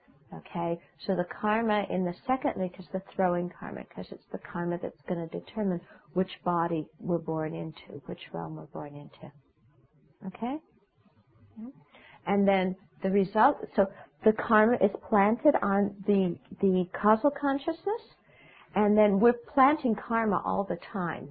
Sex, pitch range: female, 165-200 Hz